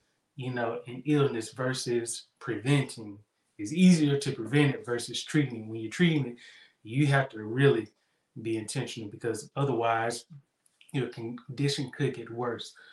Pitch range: 120-150 Hz